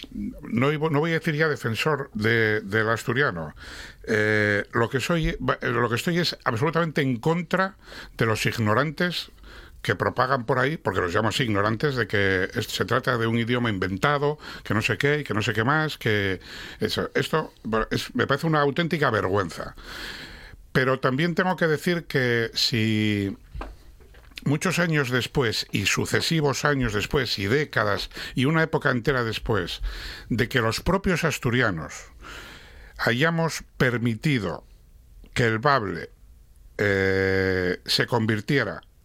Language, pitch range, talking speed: Spanish, 105-145 Hz, 145 wpm